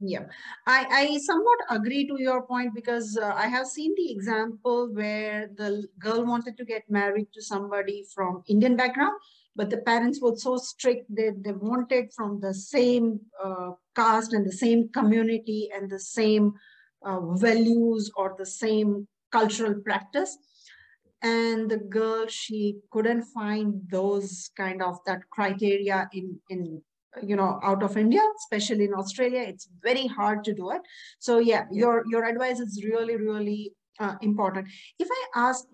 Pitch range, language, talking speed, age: 200-235 Hz, Hindi, 160 wpm, 50-69